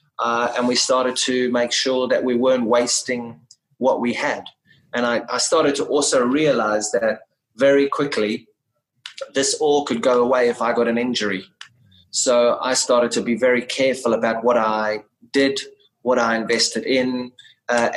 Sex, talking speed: male, 165 wpm